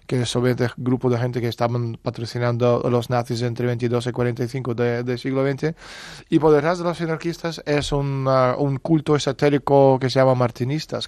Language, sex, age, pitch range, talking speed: English, male, 20-39, 125-140 Hz, 185 wpm